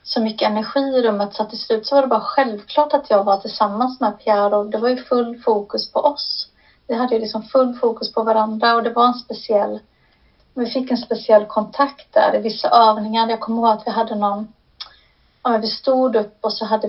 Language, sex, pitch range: Swedish, female, 215-240 Hz